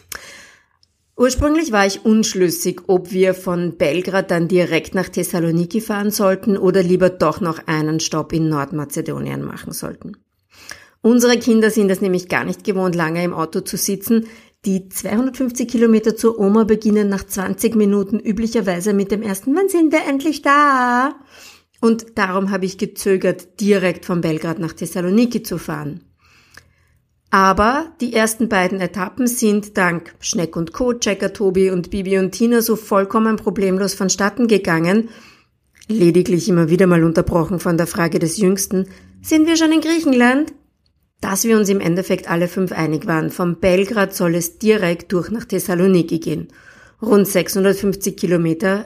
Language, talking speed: English, 150 wpm